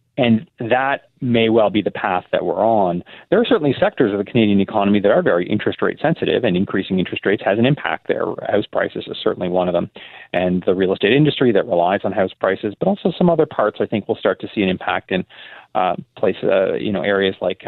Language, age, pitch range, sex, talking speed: English, 30-49, 95-140 Hz, male, 240 wpm